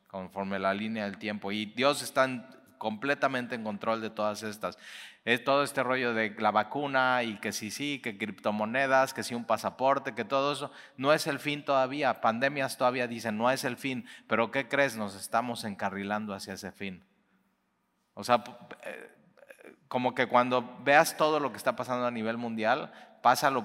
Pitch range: 110-130 Hz